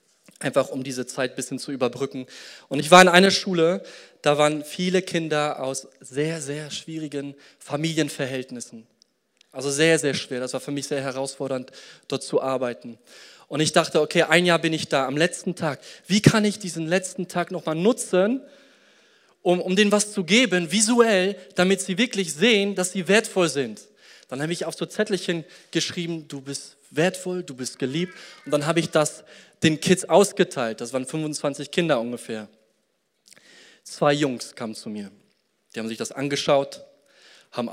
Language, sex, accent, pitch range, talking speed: German, male, German, 130-185 Hz, 170 wpm